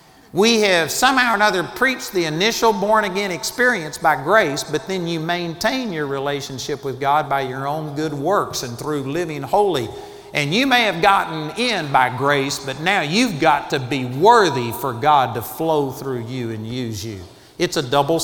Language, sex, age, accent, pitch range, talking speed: English, male, 50-69, American, 145-205 Hz, 190 wpm